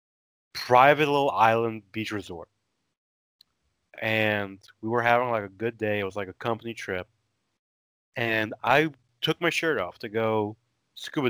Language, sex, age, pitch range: English, male, 20-39, 100-120 Hz